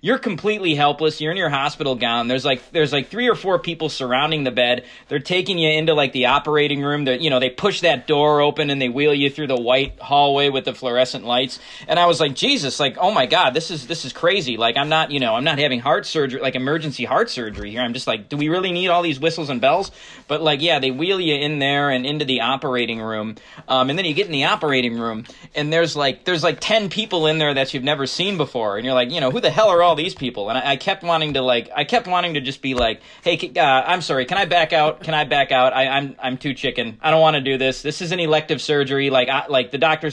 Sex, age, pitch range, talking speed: male, 20-39, 130-165 Hz, 275 wpm